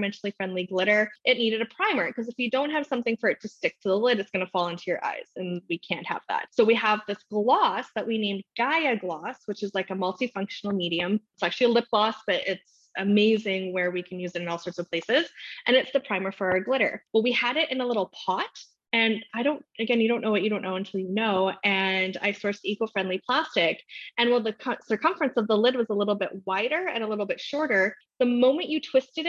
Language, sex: English, female